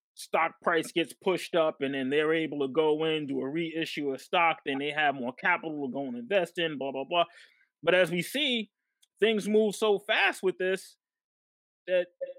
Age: 20-39